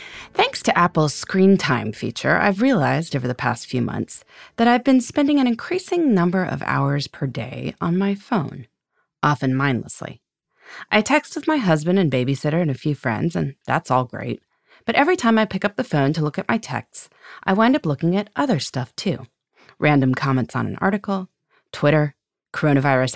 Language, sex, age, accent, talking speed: English, female, 30-49, American, 185 wpm